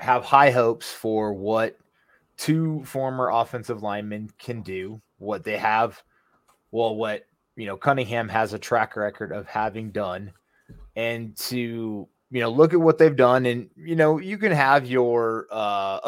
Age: 20-39